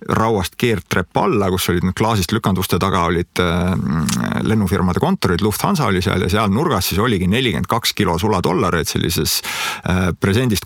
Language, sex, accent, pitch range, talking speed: English, male, Finnish, 95-115 Hz, 145 wpm